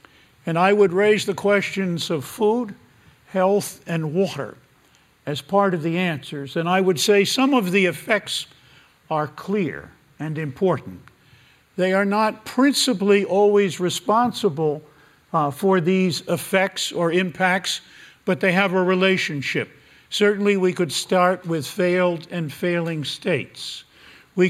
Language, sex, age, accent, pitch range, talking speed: English, male, 50-69, American, 155-190 Hz, 135 wpm